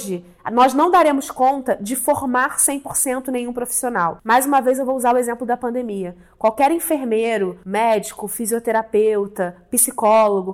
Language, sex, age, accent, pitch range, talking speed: Portuguese, female, 20-39, Brazilian, 230-295 Hz, 140 wpm